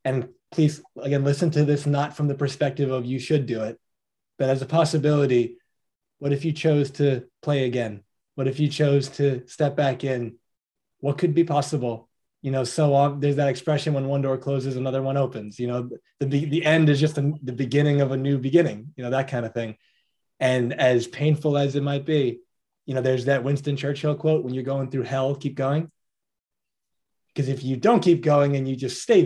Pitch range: 125-145 Hz